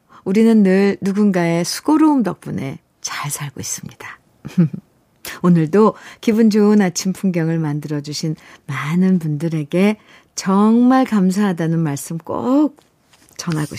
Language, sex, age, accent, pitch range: Korean, female, 50-69, native, 180-270 Hz